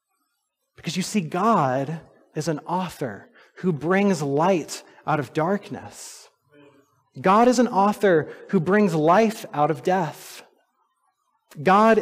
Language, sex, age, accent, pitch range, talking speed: English, male, 30-49, American, 145-215 Hz, 120 wpm